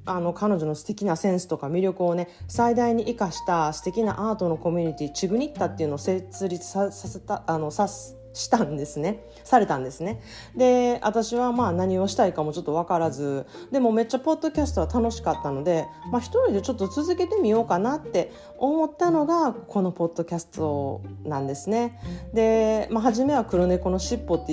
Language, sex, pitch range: Japanese, female, 165-230 Hz